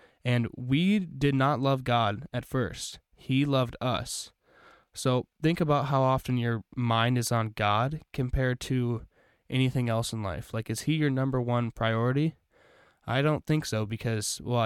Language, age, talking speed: English, 10-29, 165 wpm